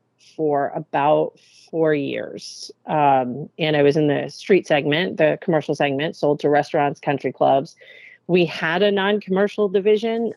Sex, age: female, 40-59